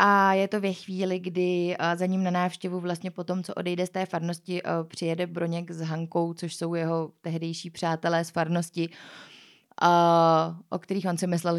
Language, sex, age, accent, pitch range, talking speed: Czech, female, 20-39, native, 165-200 Hz, 175 wpm